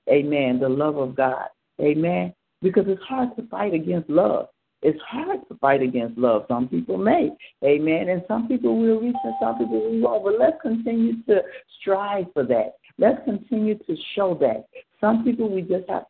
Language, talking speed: English, 185 wpm